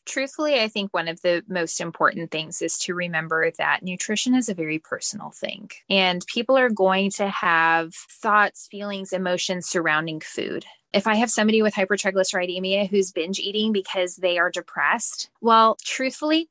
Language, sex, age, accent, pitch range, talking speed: English, female, 10-29, American, 180-230 Hz, 165 wpm